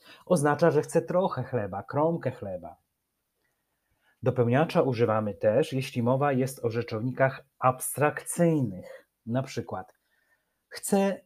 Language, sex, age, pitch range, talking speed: Polish, male, 40-59, 110-145 Hz, 100 wpm